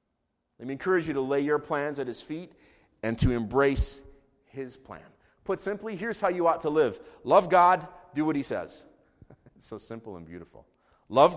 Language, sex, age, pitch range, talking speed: English, male, 30-49, 130-160 Hz, 190 wpm